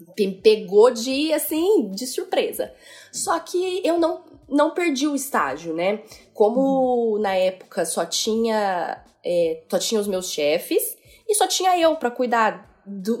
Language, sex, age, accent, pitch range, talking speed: Portuguese, female, 10-29, Brazilian, 195-290 Hz, 145 wpm